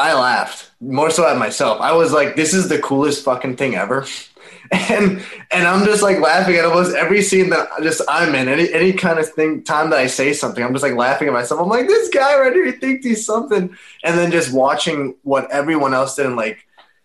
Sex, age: male, 20-39